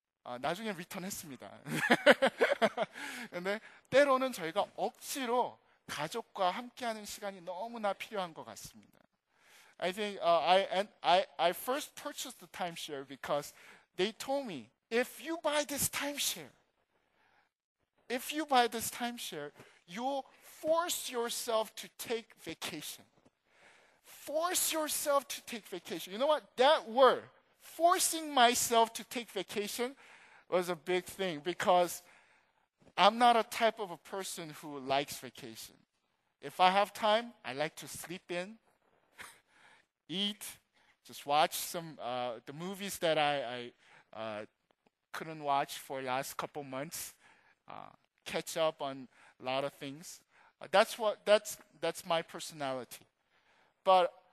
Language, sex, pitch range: Korean, male, 160-240 Hz